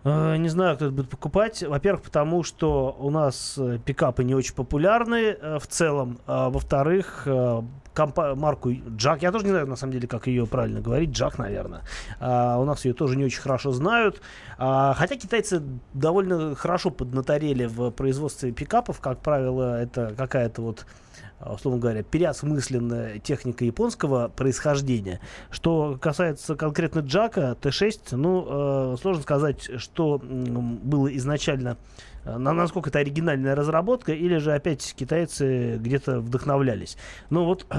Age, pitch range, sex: 30-49, 125-155 Hz, male